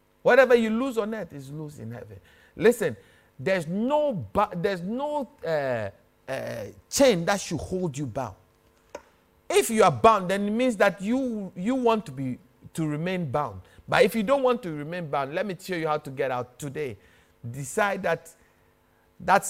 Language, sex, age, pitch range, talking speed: English, male, 50-69, 120-195 Hz, 180 wpm